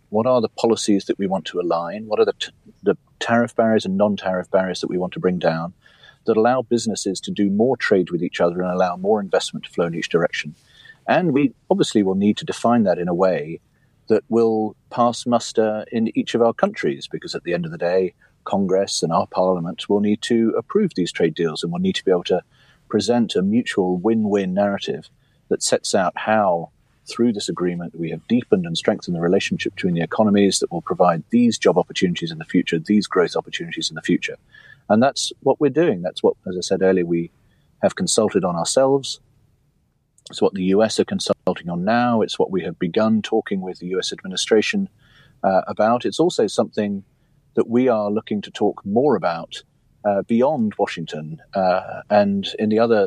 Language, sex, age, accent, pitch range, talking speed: English, male, 40-59, British, 95-120 Hz, 205 wpm